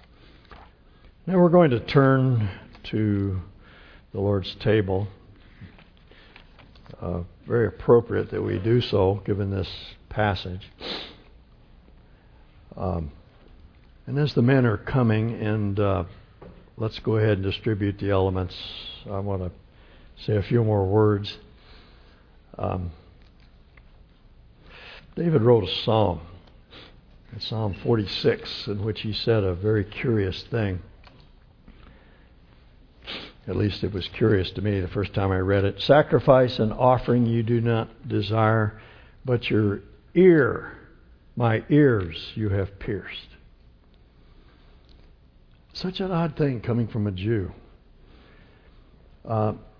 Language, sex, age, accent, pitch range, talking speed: English, male, 60-79, American, 90-115 Hz, 115 wpm